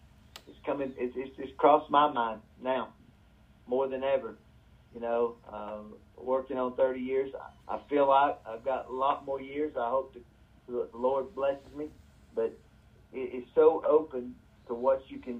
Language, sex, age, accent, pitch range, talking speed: English, male, 40-59, American, 110-130 Hz, 180 wpm